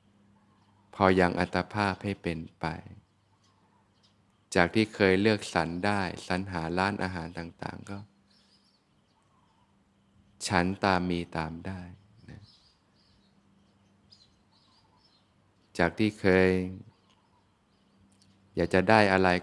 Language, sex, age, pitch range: Thai, male, 20-39, 90-100 Hz